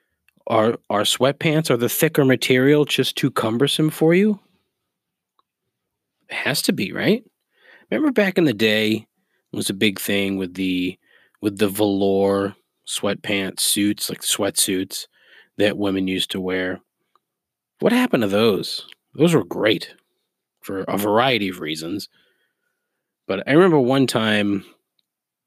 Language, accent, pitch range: English, American, 95-130 Hz